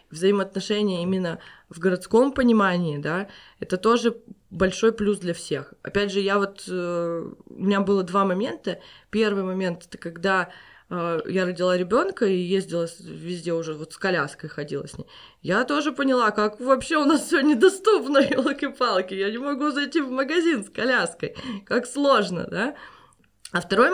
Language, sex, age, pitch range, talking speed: Russian, female, 20-39, 180-235 Hz, 155 wpm